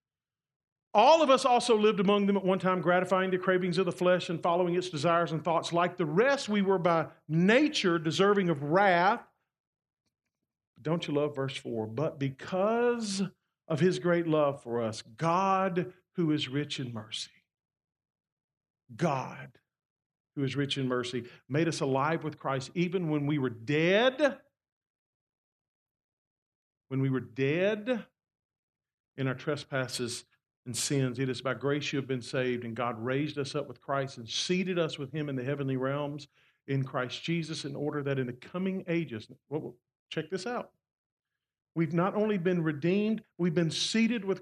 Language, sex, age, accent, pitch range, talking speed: English, male, 50-69, American, 135-185 Hz, 160 wpm